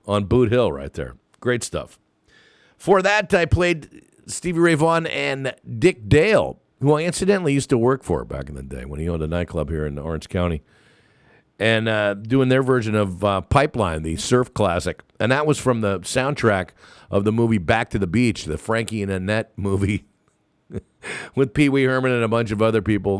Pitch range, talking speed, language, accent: 90-125 Hz, 195 wpm, English, American